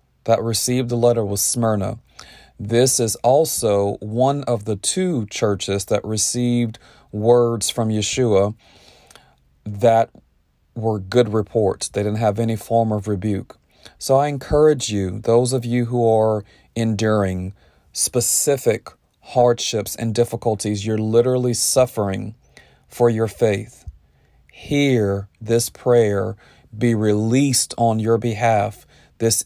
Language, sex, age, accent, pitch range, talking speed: English, male, 40-59, American, 105-120 Hz, 120 wpm